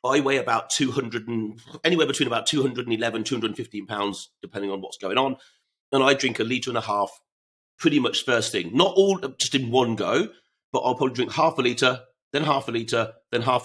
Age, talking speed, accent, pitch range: 40-59, 205 wpm, British, 110-135 Hz